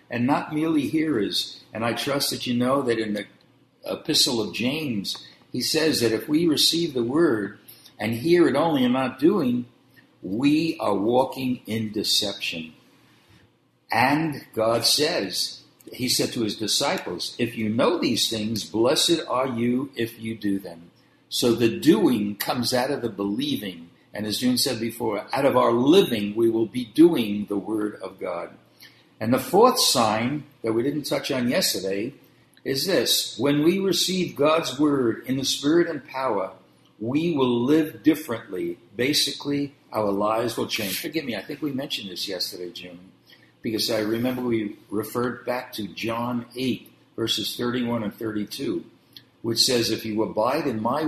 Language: English